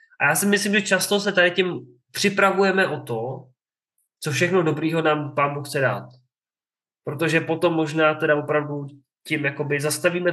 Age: 20-39